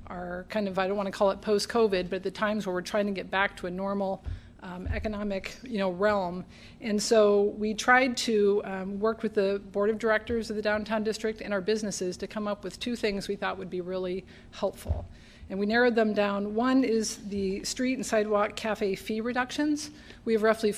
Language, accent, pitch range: English, American, 195-220 Hz